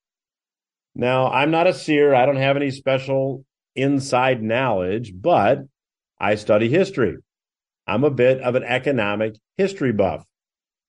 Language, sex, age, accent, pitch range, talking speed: English, male, 50-69, American, 110-150 Hz, 130 wpm